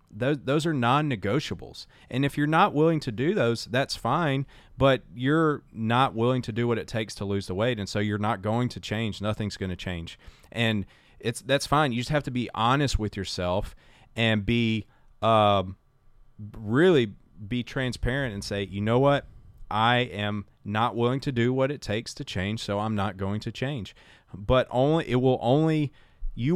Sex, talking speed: male, 190 wpm